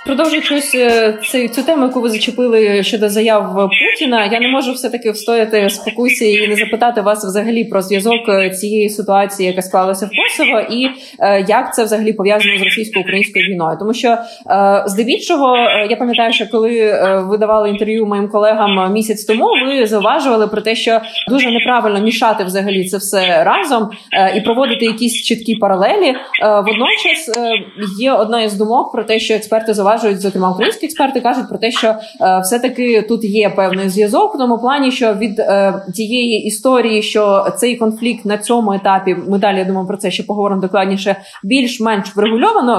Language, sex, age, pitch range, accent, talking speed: Ukrainian, female, 20-39, 205-240 Hz, native, 160 wpm